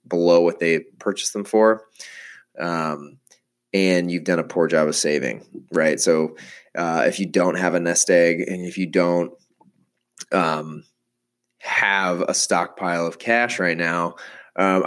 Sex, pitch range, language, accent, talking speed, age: male, 85-95 Hz, English, American, 155 wpm, 20-39